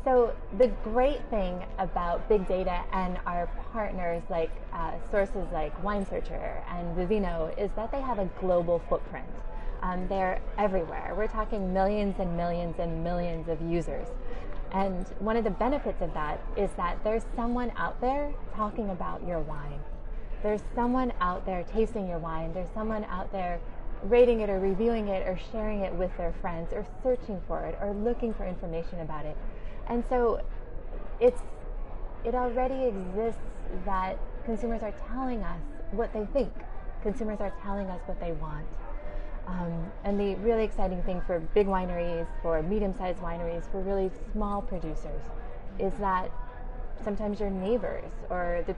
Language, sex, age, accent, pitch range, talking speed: English, female, 20-39, American, 175-220 Hz, 160 wpm